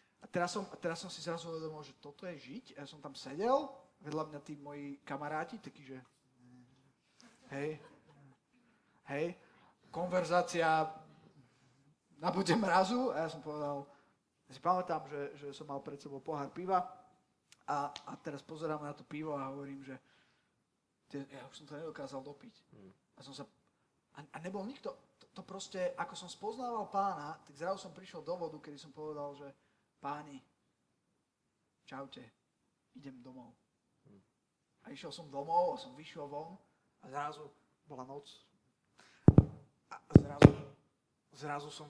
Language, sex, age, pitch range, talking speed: Slovak, male, 30-49, 140-170 Hz, 145 wpm